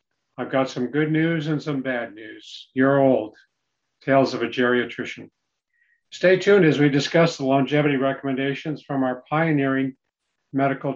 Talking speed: 150 wpm